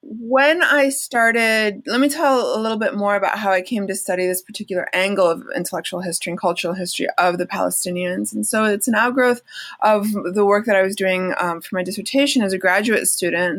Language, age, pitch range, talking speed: English, 30-49, 185-245 Hz, 210 wpm